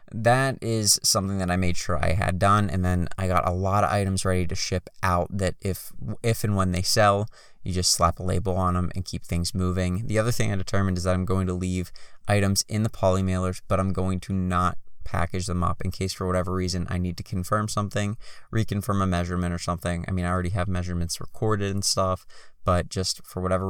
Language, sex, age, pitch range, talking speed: English, male, 20-39, 85-95 Hz, 235 wpm